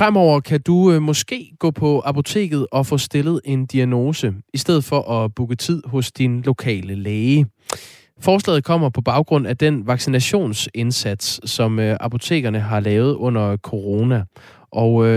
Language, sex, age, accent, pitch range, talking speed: Danish, male, 20-39, native, 110-145 Hz, 140 wpm